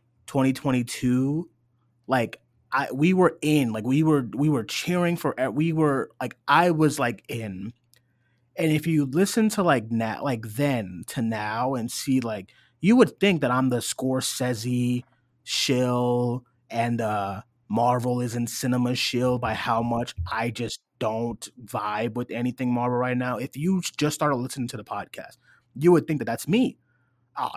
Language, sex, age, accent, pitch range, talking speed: English, male, 30-49, American, 120-150 Hz, 165 wpm